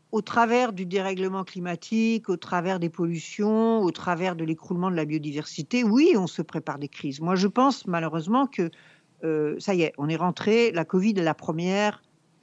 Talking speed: 190 wpm